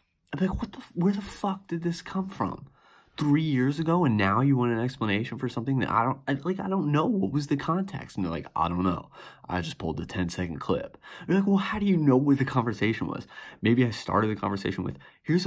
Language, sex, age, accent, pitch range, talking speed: English, male, 30-49, American, 95-135 Hz, 260 wpm